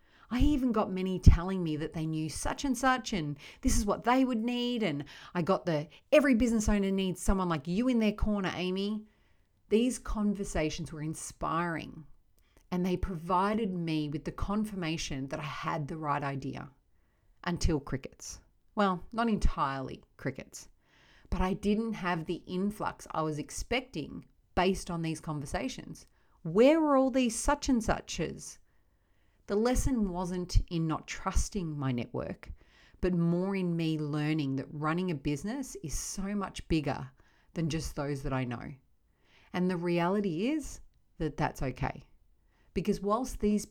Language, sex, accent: English, female, Australian